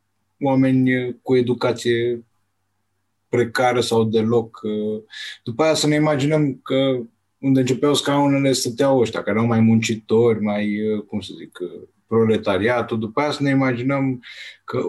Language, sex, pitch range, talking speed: Romanian, male, 110-135 Hz, 130 wpm